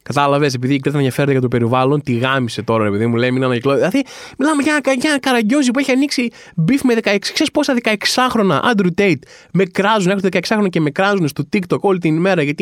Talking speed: 215 wpm